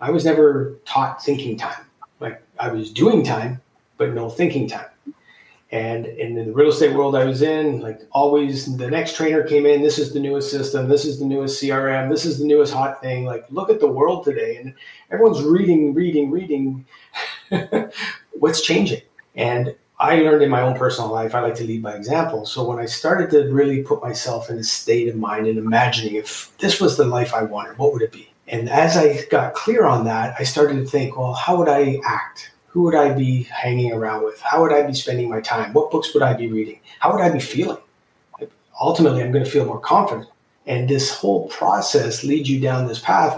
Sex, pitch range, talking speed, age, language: male, 125-155 Hz, 215 wpm, 40-59, English